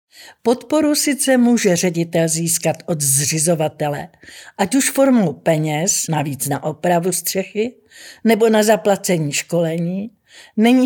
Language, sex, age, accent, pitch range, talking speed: Czech, female, 50-69, native, 185-235 Hz, 110 wpm